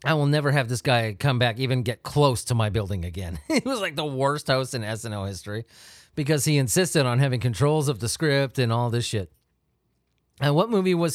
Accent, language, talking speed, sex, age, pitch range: American, English, 230 wpm, male, 30-49, 115-155 Hz